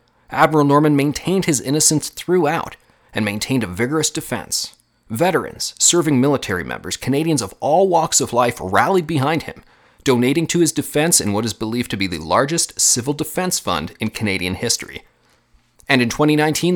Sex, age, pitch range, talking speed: male, 30-49, 115-160 Hz, 160 wpm